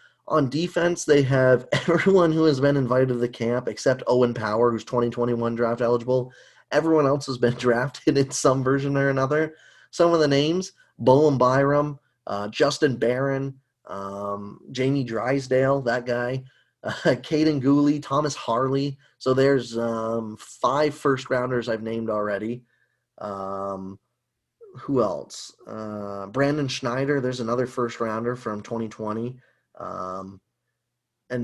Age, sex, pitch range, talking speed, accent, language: 20-39, male, 120-145 Hz, 130 wpm, American, English